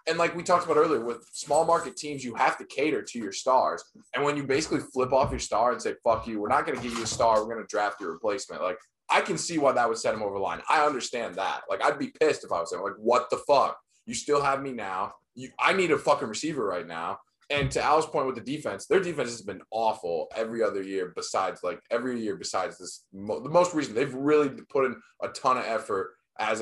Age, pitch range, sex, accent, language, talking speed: 20-39, 115-150 Hz, male, American, English, 260 wpm